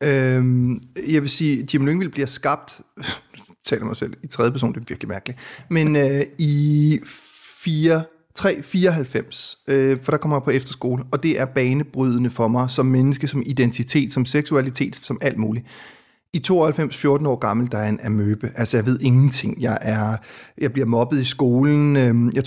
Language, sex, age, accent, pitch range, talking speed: Danish, male, 30-49, native, 120-140 Hz, 180 wpm